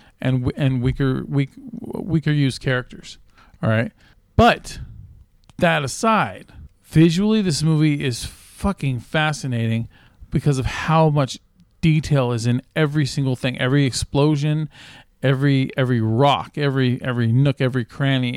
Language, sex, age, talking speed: English, male, 40-59, 125 wpm